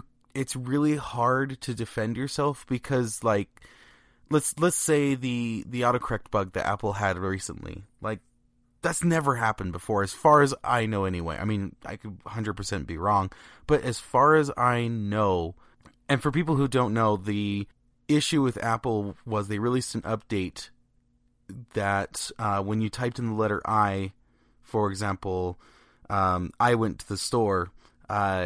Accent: American